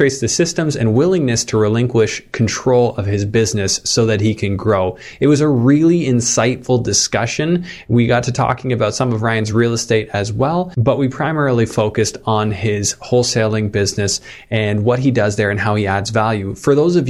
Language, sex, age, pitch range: English, male, 20-39, 105-130 Hz